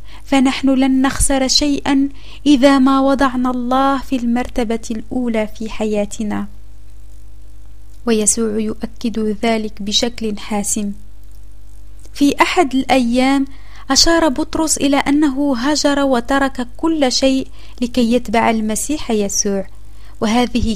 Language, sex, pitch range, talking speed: Arabic, female, 205-260 Hz, 100 wpm